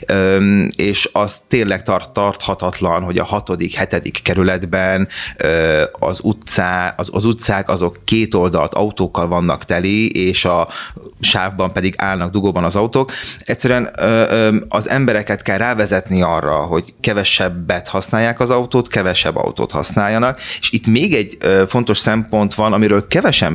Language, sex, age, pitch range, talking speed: Hungarian, male, 30-49, 95-125 Hz, 125 wpm